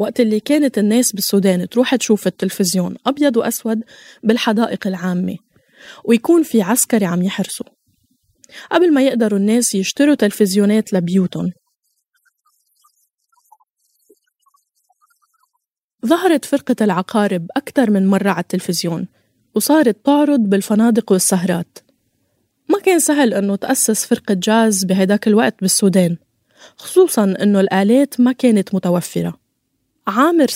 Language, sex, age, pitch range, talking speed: Arabic, female, 20-39, 195-255 Hz, 105 wpm